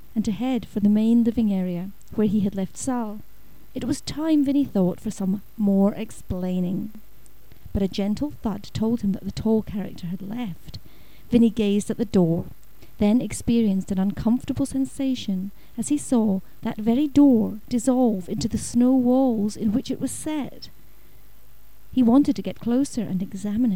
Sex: female